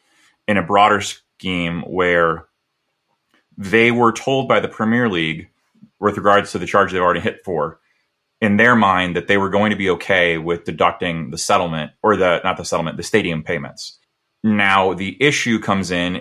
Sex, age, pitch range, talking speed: male, 30-49, 90-105 Hz, 180 wpm